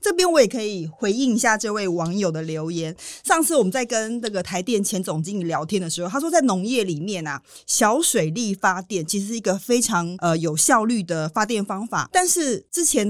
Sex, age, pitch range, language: female, 30-49, 180-255 Hz, Chinese